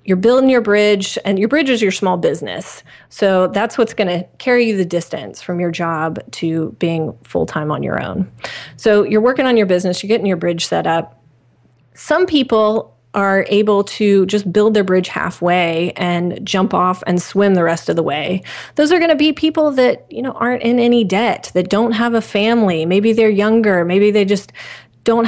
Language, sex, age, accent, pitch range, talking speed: English, female, 30-49, American, 180-230 Hz, 205 wpm